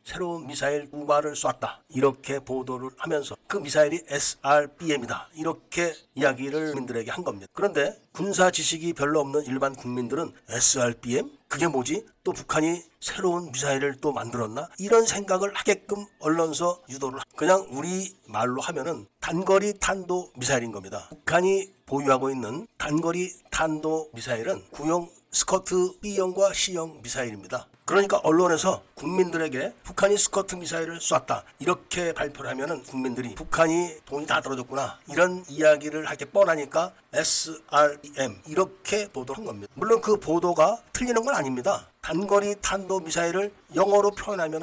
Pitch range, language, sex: 140-185 Hz, Korean, male